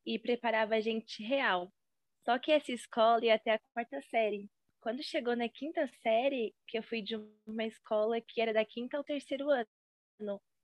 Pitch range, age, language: 210-250 Hz, 10-29, Portuguese